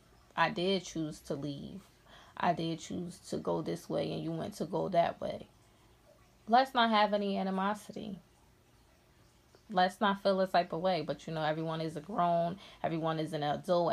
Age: 20-39